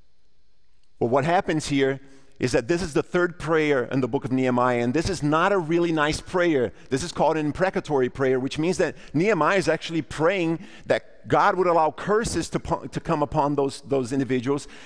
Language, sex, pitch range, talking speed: English, male, 145-190 Hz, 200 wpm